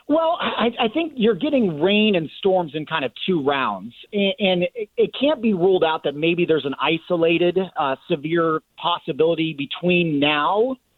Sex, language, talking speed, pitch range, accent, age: male, English, 165 wpm, 145-180 Hz, American, 40-59